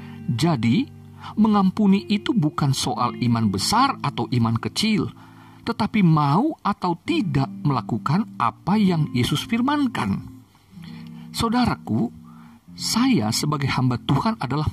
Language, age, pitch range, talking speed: Indonesian, 50-69, 125-210 Hz, 100 wpm